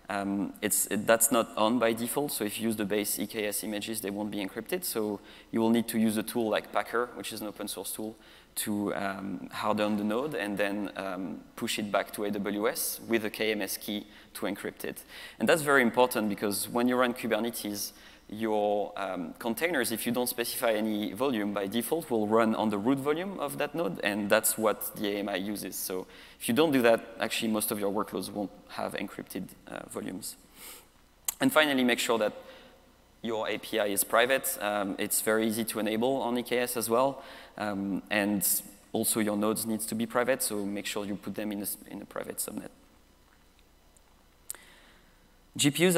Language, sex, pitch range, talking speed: English, male, 105-120 Hz, 190 wpm